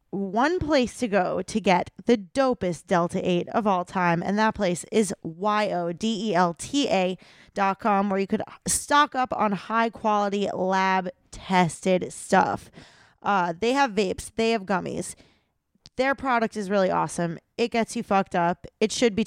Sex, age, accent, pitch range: female, 20-39, American, 185-235 Hz